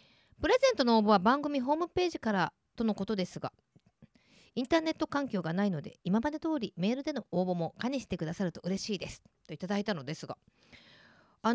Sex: female